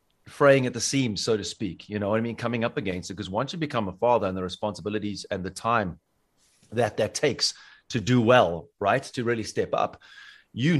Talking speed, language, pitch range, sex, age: 220 wpm, English, 100-120 Hz, male, 30-49